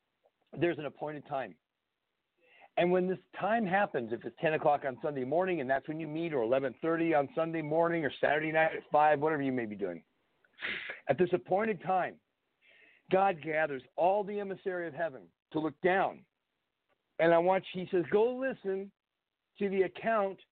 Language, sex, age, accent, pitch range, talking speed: English, male, 50-69, American, 150-195 Hz, 175 wpm